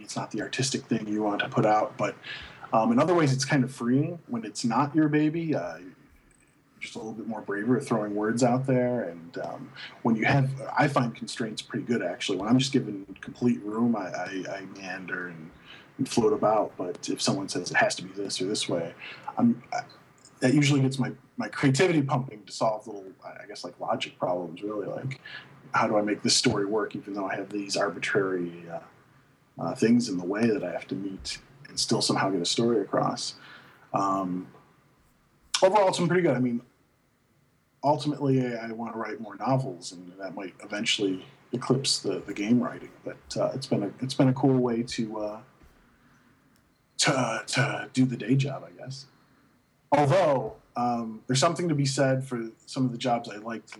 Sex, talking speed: male, 200 wpm